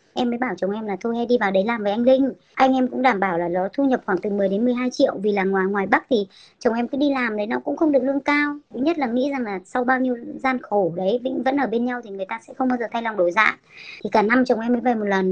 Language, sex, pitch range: Vietnamese, male, 215-275 Hz